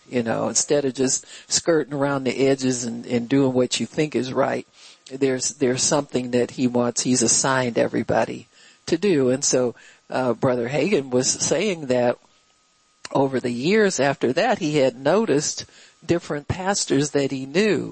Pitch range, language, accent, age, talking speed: 130-175 Hz, English, American, 60-79, 165 wpm